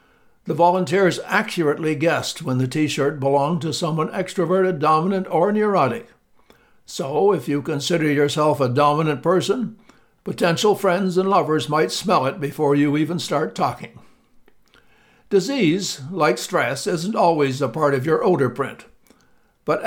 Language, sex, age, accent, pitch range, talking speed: English, male, 60-79, American, 145-180 Hz, 140 wpm